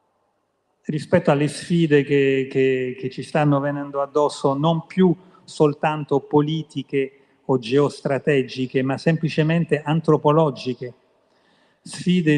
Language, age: Italian, 40-59